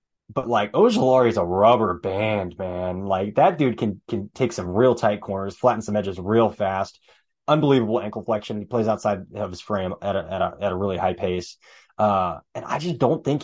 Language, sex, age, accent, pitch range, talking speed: English, male, 20-39, American, 105-125 Hz, 205 wpm